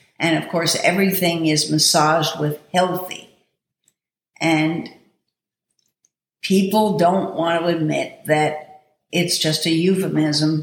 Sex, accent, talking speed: female, American, 105 wpm